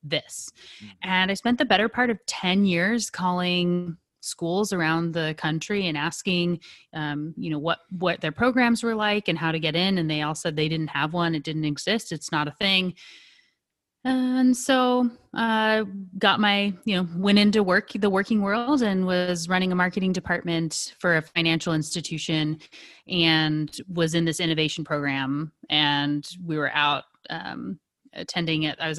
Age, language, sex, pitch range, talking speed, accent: 30-49, English, female, 150-185 Hz, 180 wpm, American